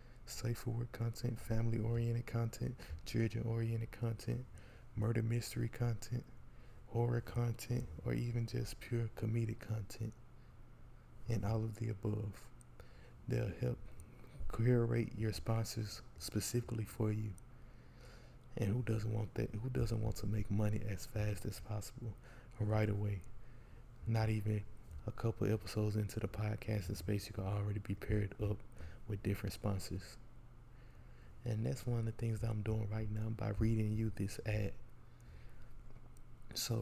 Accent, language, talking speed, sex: American, English, 140 wpm, male